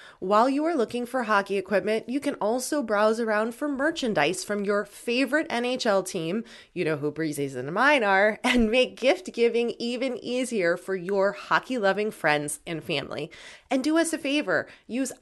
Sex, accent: female, American